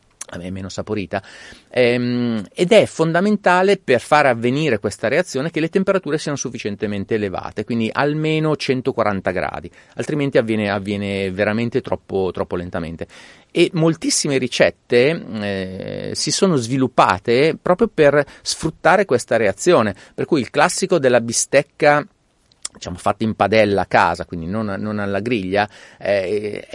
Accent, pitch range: native, 100-145 Hz